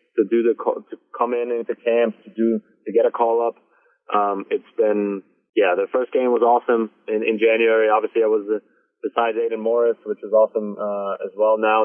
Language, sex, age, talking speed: English, male, 20-39, 210 wpm